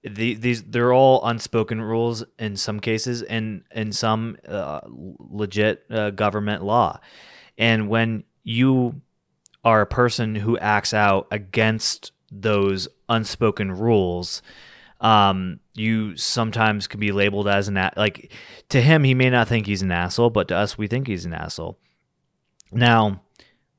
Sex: male